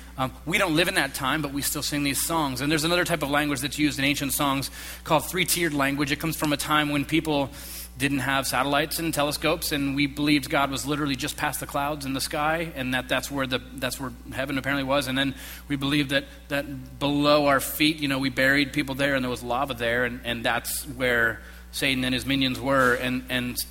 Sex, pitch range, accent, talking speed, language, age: male, 120-150 Hz, American, 235 wpm, English, 30-49